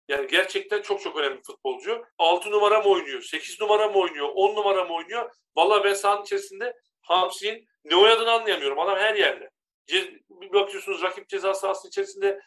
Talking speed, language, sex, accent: 175 wpm, Turkish, male, native